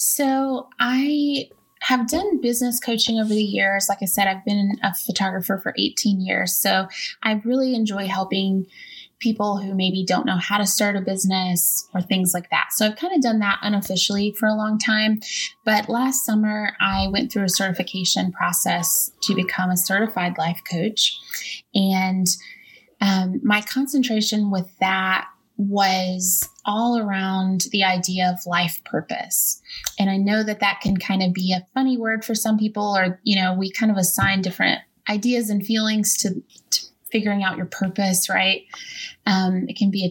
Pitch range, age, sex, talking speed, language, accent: 190-225 Hz, 20-39, female, 175 wpm, English, American